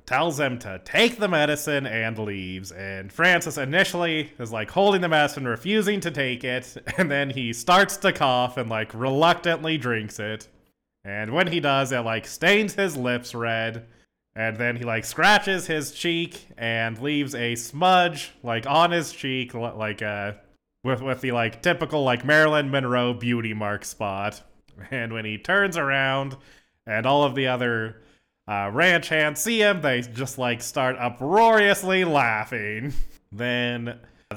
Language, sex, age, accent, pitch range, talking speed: English, male, 20-39, American, 115-160 Hz, 160 wpm